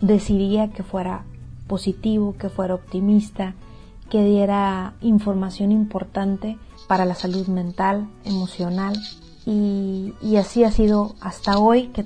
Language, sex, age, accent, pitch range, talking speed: Spanish, female, 30-49, Mexican, 190-215 Hz, 120 wpm